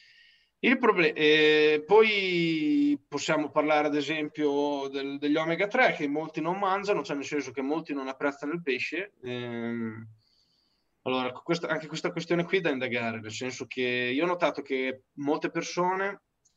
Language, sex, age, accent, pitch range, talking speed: Italian, male, 20-39, native, 140-165 Hz, 155 wpm